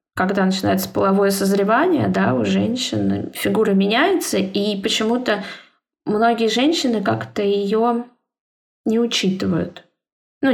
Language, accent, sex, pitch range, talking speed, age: Russian, native, female, 195-245 Hz, 100 wpm, 20-39